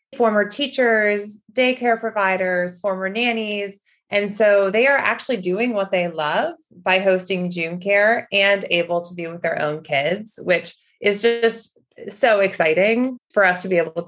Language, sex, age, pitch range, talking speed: English, female, 20-39, 170-210 Hz, 160 wpm